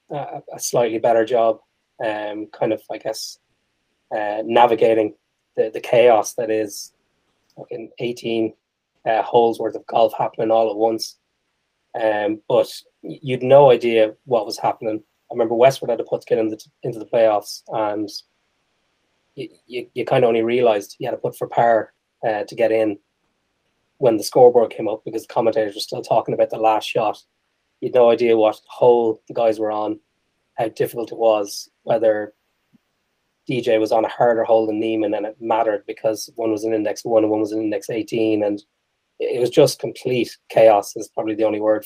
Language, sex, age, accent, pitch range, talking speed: English, male, 20-39, Irish, 110-120 Hz, 185 wpm